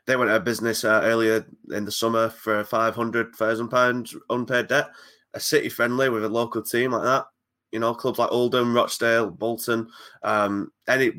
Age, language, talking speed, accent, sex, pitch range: 20-39, English, 170 wpm, British, male, 105-115 Hz